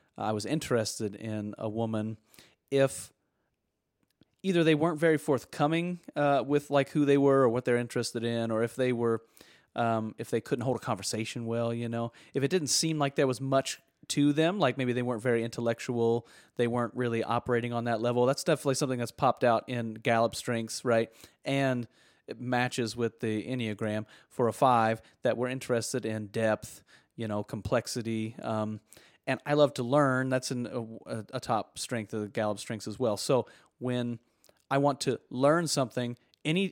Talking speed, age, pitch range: 185 wpm, 30-49, 115-135 Hz